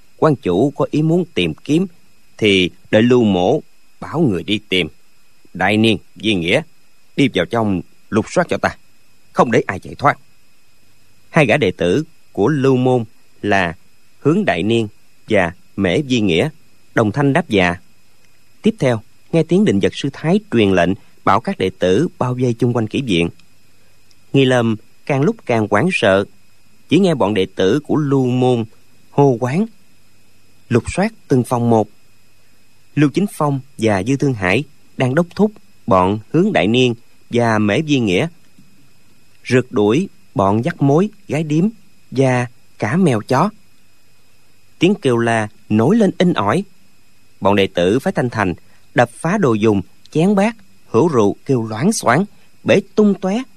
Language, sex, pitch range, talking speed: Vietnamese, male, 105-150 Hz, 165 wpm